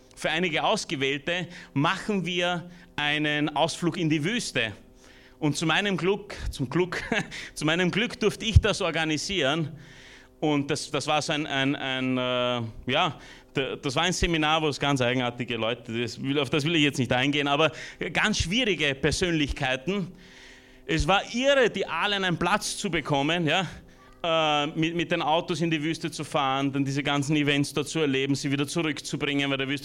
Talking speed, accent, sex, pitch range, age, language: 175 wpm, Austrian, male, 135-175 Hz, 30-49, German